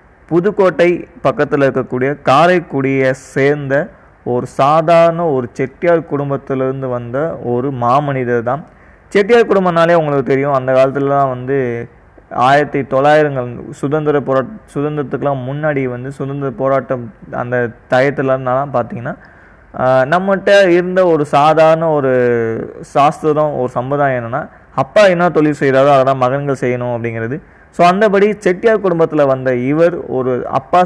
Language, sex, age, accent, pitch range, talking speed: Tamil, male, 20-39, native, 130-165 Hz, 115 wpm